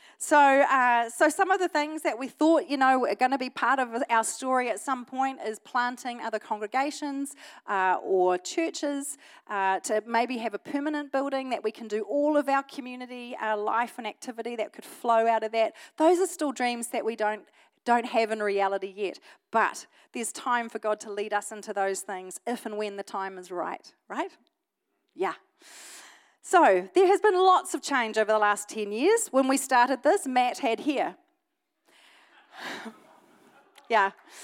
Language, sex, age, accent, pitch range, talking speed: English, female, 40-59, Australian, 220-315 Hz, 185 wpm